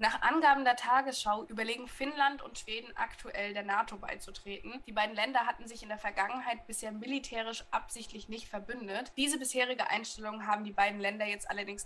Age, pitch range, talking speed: 10-29, 205-245 Hz, 170 wpm